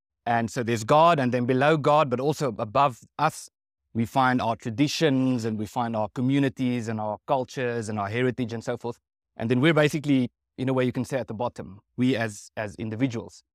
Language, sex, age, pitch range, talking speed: English, male, 30-49, 110-130 Hz, 210 wpm